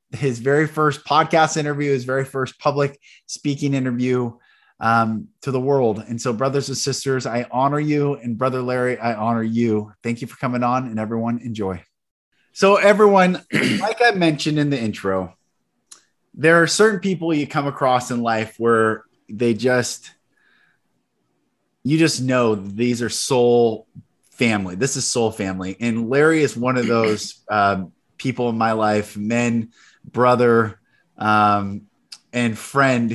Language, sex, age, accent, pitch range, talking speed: English, male, 20-39, American, 115-145 Hz, 150 wpm